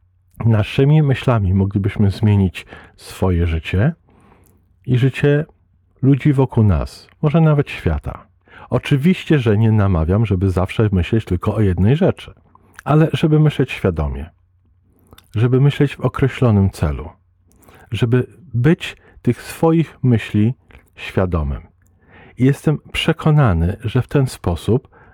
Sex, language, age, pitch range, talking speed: male, Polish, 50-69, 95-125 Hz, 110 wpm